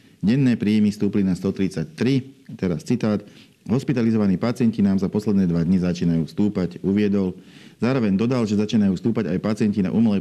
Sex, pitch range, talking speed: male, 95-110 Hz, 155 wpm